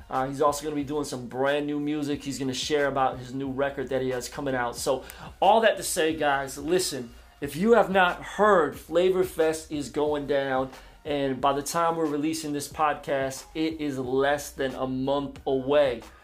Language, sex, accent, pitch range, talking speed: English, male, American, 135-160 Hz, 205 wpm